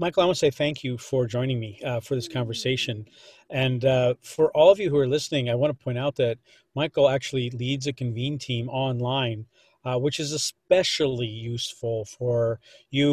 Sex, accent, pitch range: male, American, 125-145 Hz